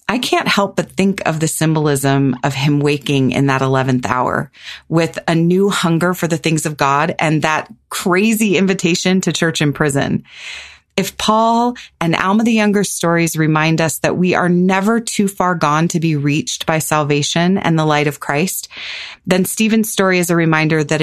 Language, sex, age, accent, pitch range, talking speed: English, female, 30-49, American, 145-185 Hz, 185 wpm